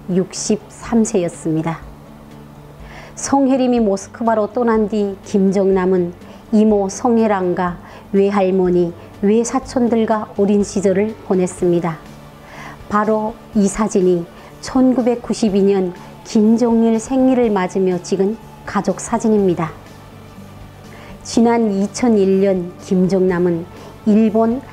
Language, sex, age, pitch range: Korean, male, 40-59, 180-225 Hz